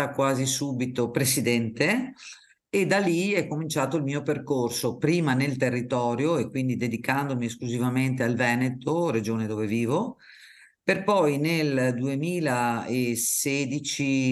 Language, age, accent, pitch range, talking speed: Italian, 50-69, native, 125-145 Hz, 115 wpm